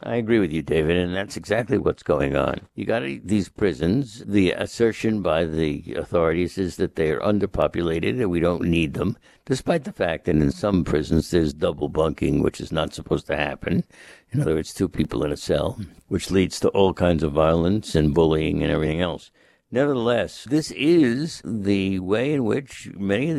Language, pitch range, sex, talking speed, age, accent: English, 90-135 Hz, male, 190 wpm, 60-79, American